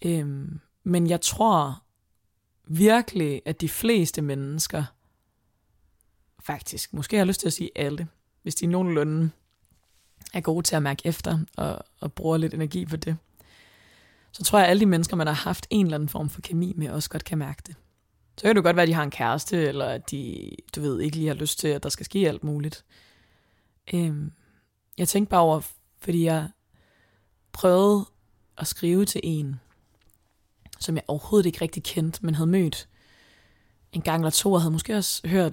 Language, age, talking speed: Danish, 20-39, 185 wpm